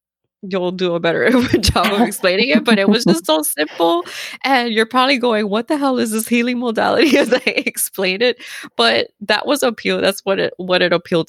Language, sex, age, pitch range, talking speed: English, female, 20-39, 155-215 Hz, 205 wpm